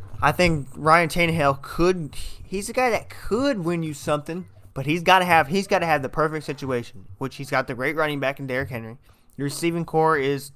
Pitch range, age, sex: 115-145 Hz, 20-39, male